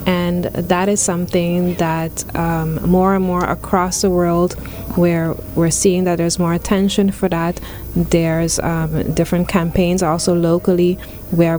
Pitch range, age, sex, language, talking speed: 165-185 Hz, 20-39, female, English, 145 wpm